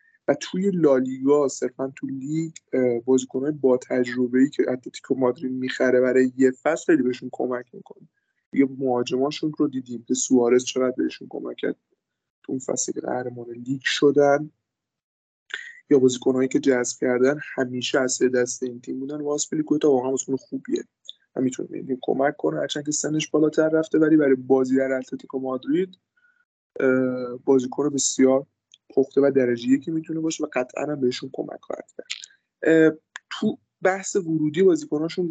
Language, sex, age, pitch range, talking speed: Persian, male, 20-39, 130-150 Hz, 140 wpm